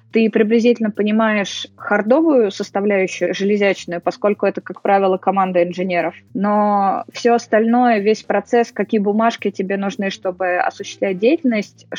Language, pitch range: Russian, 190-220 Hz